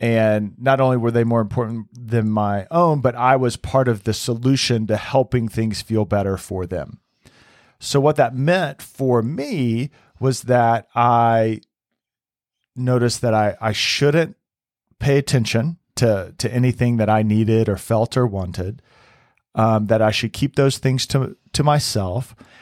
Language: English